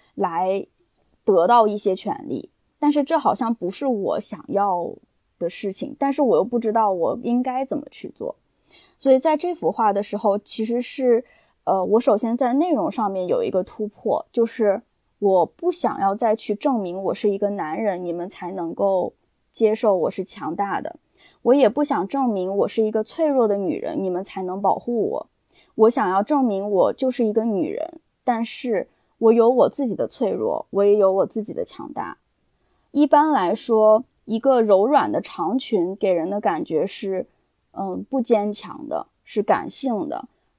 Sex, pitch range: female, 195-260 Hz